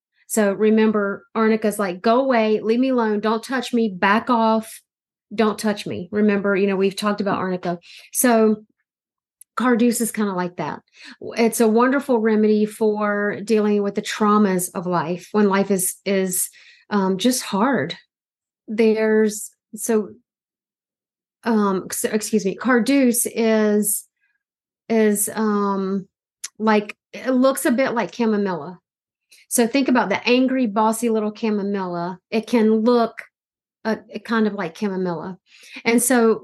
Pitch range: 200-230 Hz